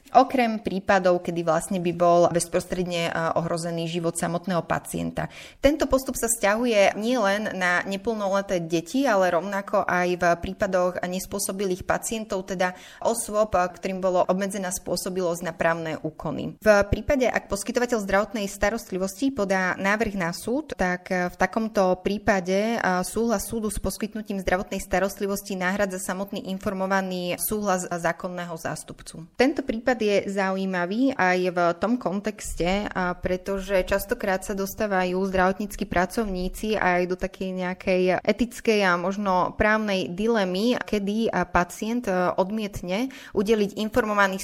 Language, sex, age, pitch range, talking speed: Slovak, female, 20-39, 180-210 Hz, 120 wpm